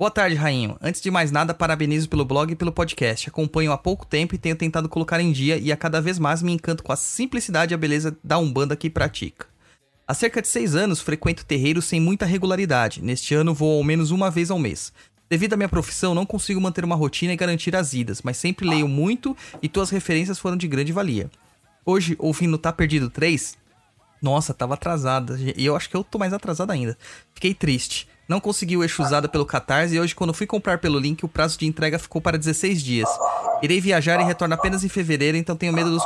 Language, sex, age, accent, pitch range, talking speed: Portuguese, male, 20-39, Brazilian, 150-185 Hz, 225 wpm